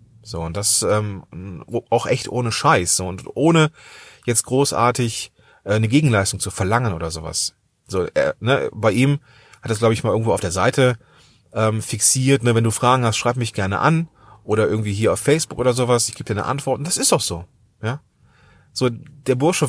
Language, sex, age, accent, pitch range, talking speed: German, male, 30-49, German, 100-130 Hz, 200 wpm